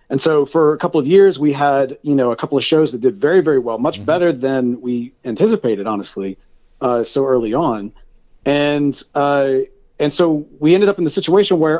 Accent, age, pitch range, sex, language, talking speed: American, 40-59, 125-160 Hz, male, English, 210 wpm